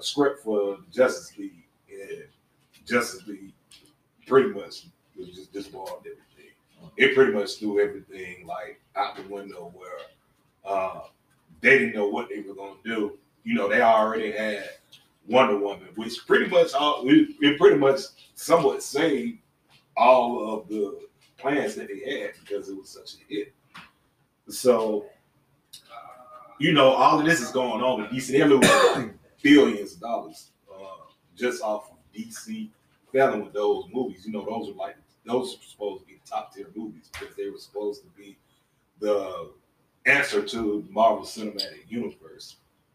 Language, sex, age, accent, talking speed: English, male, 30-49, American, 155 wpm